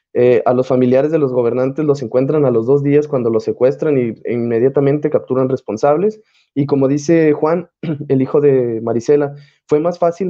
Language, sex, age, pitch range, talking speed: Spanish, male, 20-39, 125-150 Hz, 180 wpm